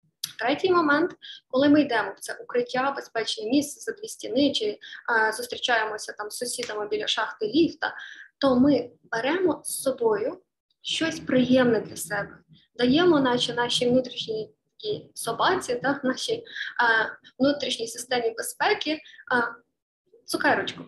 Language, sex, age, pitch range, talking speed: Ukrainian, female, 20-39, 235-310 Hz, 125 wpm